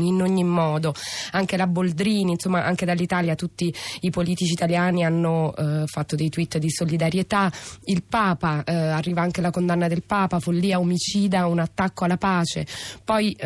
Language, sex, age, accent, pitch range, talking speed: Italian, female, 20-39, native, 165-180 Hz, 160 wpm